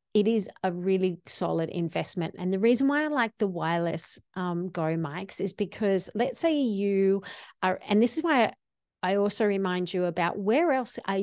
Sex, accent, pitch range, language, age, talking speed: female, Australian, 175-215 Hz, English, 40-59, 185 wpm